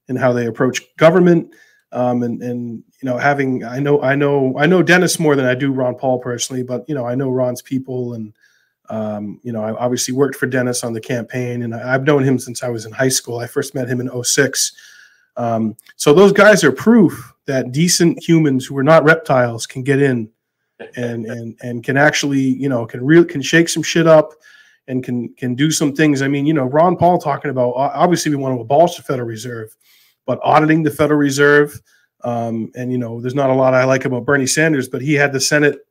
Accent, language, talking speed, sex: American, English, 225 wpm, male